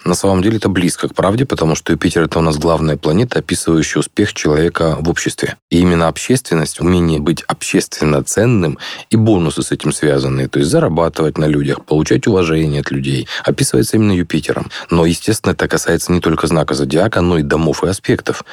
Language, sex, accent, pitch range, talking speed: Russian, male, native, 75-90 Hz, 185 wpm